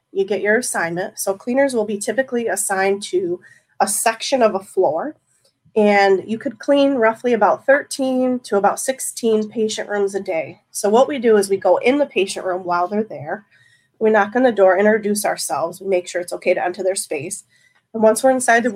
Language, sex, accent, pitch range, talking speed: English, female, American, 190-220 Hz, 205 wpm